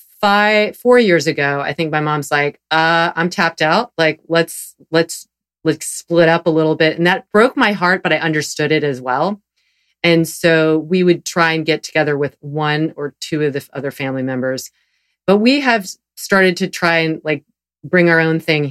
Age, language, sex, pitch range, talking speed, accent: 30-49, English, female, 150-185 Hz, 200 wpm, American